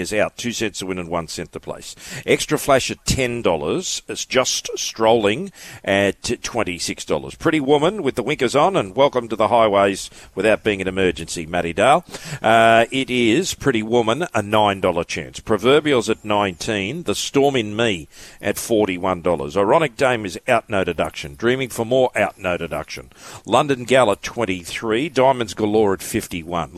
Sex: male